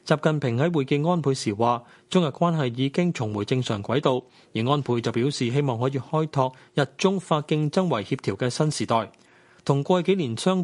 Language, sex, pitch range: Chinese, male, 120-155 Hz